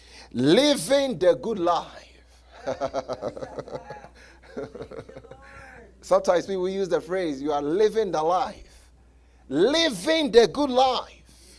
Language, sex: English, male